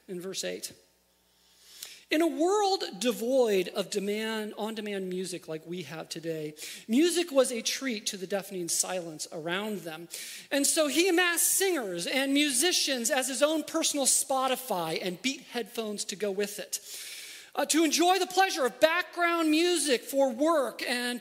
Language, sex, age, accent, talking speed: English, male, 40-59, American, 155 wpm